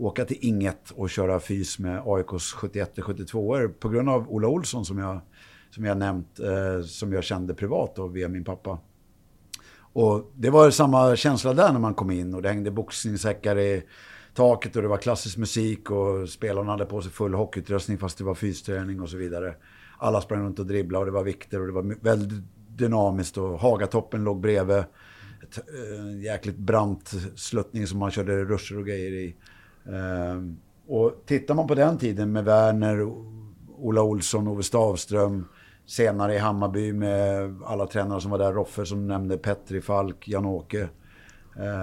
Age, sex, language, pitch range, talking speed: 50-69, male, Swedish, 95-110 Hz, 175 wpm